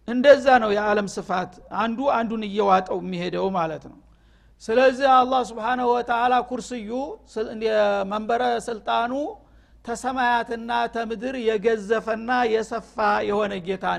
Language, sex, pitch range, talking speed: Amharic, male, 210-250 Hz, 100 wpm